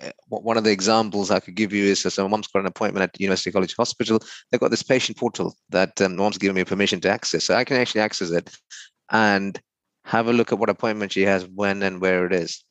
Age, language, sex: 30-49, English, male